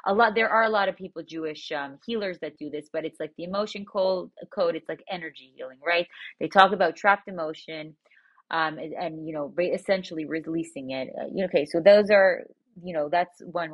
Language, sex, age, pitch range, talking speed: English, female, 30-49, 155-200 Hz, 205 wpm